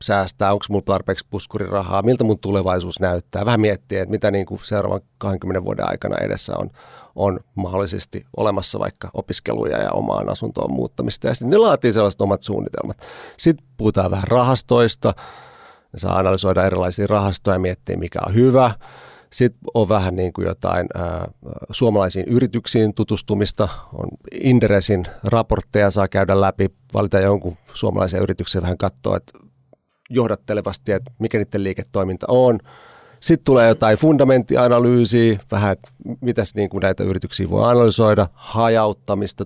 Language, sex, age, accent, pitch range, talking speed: Finnish, male, 40-59, native, 95-115 Hz, 140 wpm